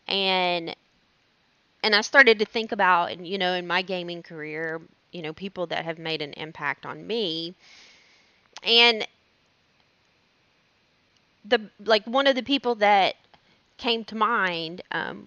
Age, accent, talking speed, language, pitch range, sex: 20-39, American, 140 wpm, English, 180-245 Hz, female